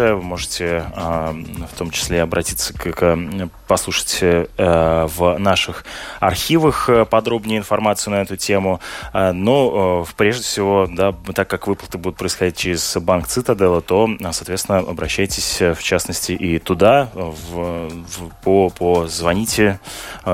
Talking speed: 115 wpm